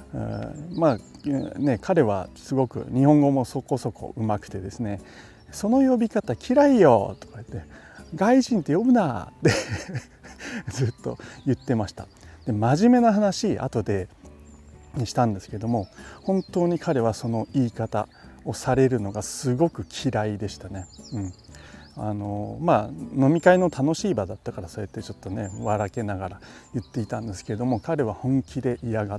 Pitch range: 100-135 Hz